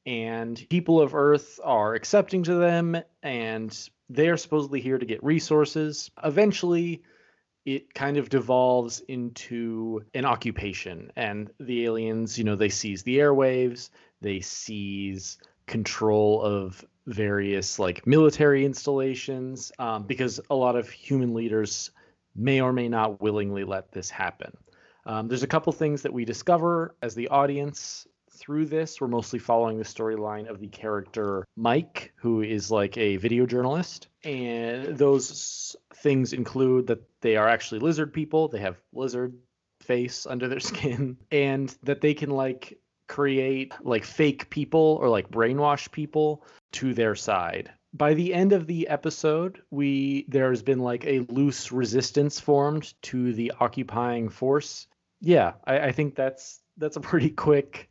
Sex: male